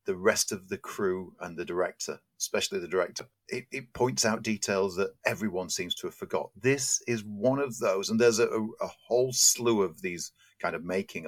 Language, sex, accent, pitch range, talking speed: English, male, British, 95-120 Hz, 200 wpm